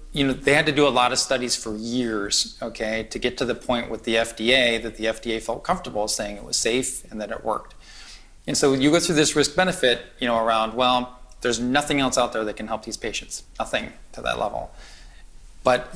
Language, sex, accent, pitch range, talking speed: English, male, American, 115-140 Hz, 230 wpm